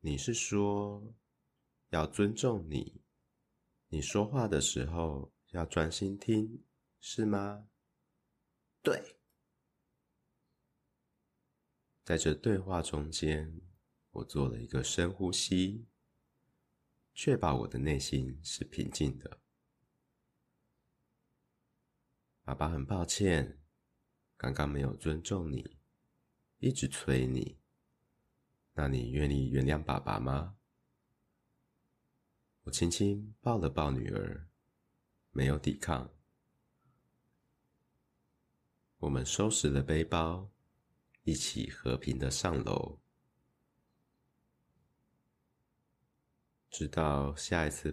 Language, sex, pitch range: Chinese, male, 70-100 Hz